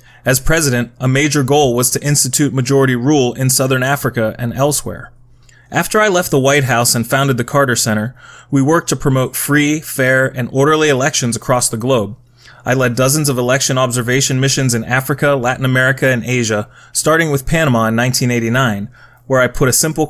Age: 30-49